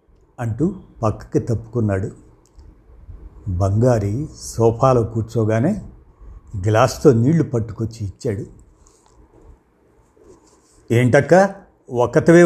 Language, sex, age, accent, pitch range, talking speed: Telugu, male, 60-79, native, 105-145 Hz, 60 wpm